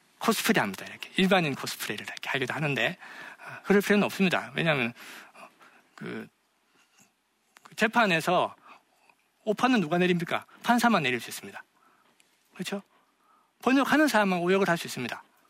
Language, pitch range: Korean, 160-210 Hz